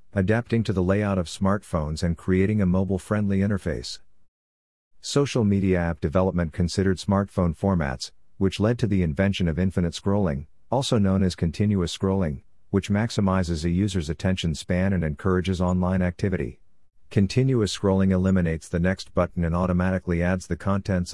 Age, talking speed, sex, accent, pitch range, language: 50-69, 150 wpm, male, American, 85-100 Hz, English